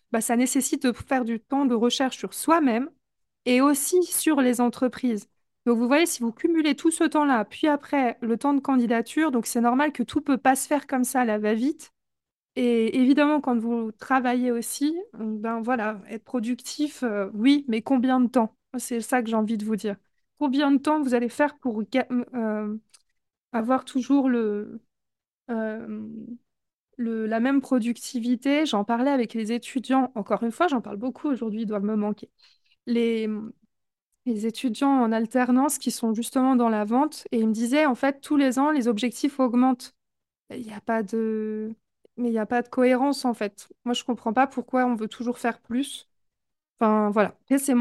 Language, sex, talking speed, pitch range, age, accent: French, female, 190 wpm, 230-270 Hz, 20-39, French